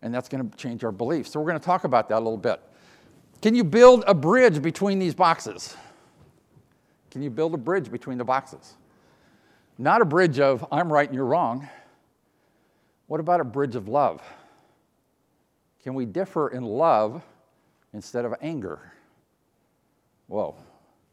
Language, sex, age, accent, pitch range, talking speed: English, male, 50-69, American, 130-175 Hz, 155 wpm